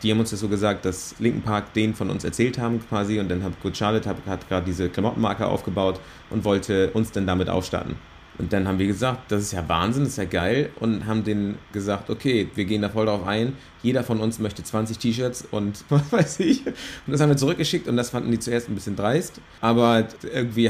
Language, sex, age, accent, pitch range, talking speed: German, male, 30-49, German, 100-125 Hz, 230 wpm